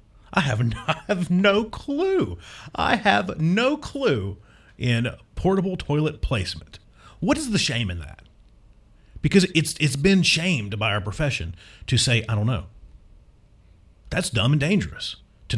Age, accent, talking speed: 40-59, American, 150 wpm